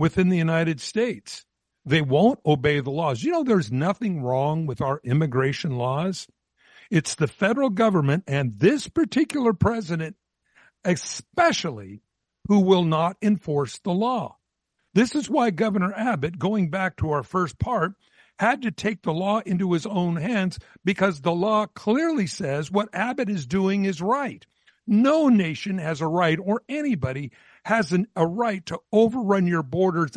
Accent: American